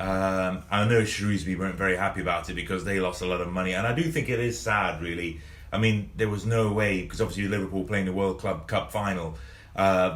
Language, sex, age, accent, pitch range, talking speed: English, male, 30-49, British, 95-110 Hz, 235 wpm